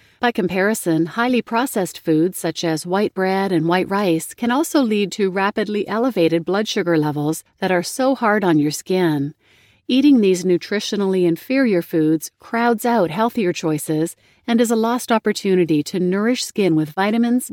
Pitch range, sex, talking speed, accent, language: 165-225 Hz, female, 160 wpm, American, English